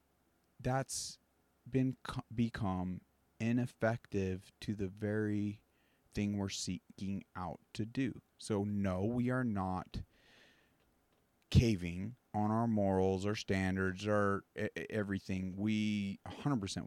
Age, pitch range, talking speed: 30-49, 95-115 Hz, 105 wpm